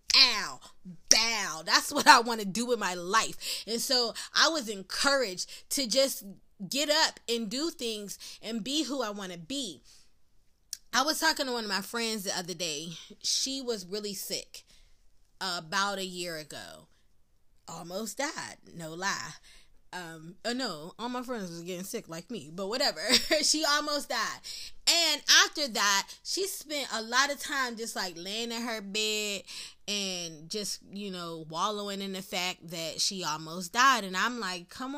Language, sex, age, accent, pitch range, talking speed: English, female, 20-39, American, 195-275 Hz, 170 wpm